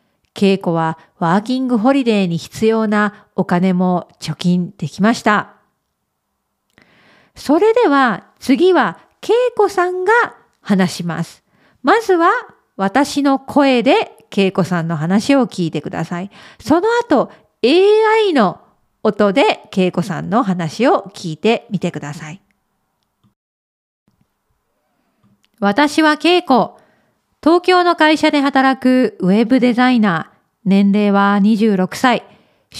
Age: 40-59